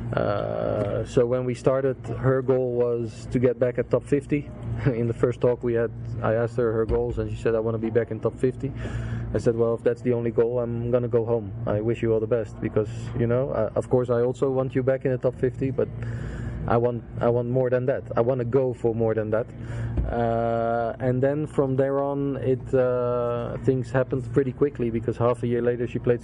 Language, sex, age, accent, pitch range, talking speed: English, male, 20-39, Dutch, 115-125 Hz, 240 wpm